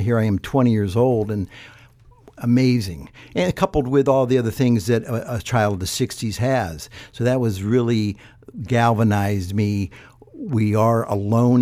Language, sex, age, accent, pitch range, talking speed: English, male, 60-79, American, 105-125 Hz, 165 wpm